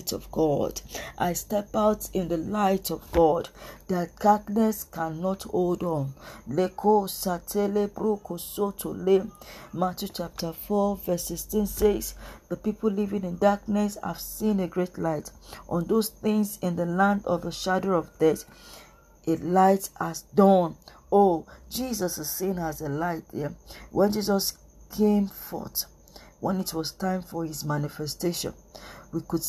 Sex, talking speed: female, 145 wpm